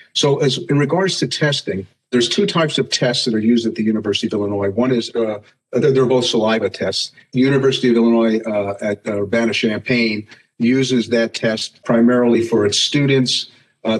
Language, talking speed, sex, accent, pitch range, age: English, 180 wpm, male, American, 110-130 Hz, 50-69